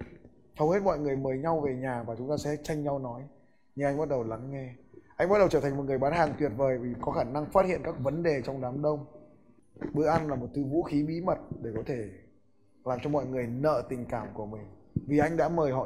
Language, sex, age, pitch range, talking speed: Vietnamese, male, 20-39, 125-160 Hz, 265 wpm